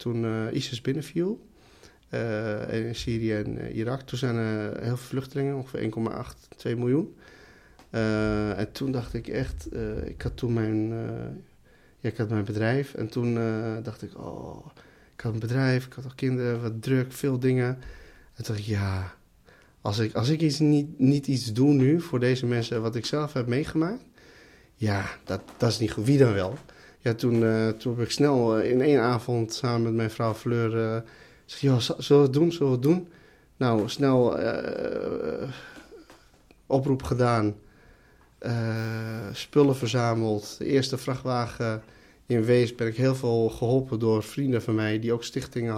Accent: Dutch